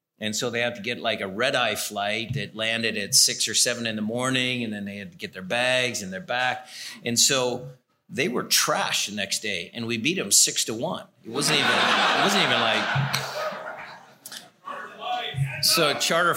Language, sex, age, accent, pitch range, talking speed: English, male, 40-59, American, 110-140 Hz, 200 wpm